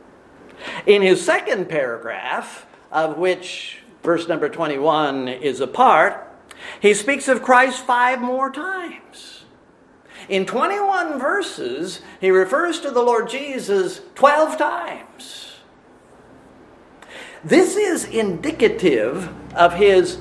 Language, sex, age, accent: English, male, 50-69, American